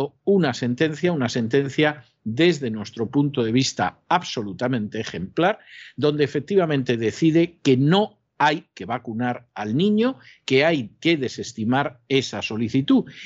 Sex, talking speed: male, 120 wpm